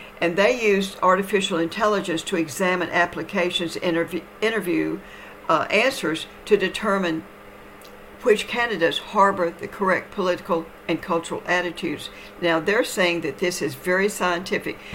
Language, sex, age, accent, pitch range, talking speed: English, female, 60-79, American, 165-200 Hz, 125 wpm